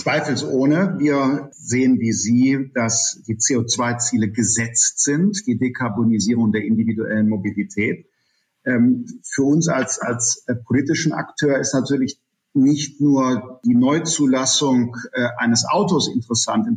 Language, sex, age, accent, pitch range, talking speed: German, male, 50-69, German, 120-150 Hz, 110 wpm